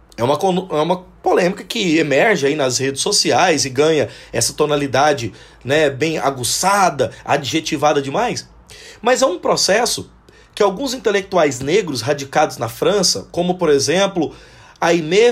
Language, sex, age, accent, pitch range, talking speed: Portuguese, male, 30-49, Brazilian, 145-215 Hz, 135 wpm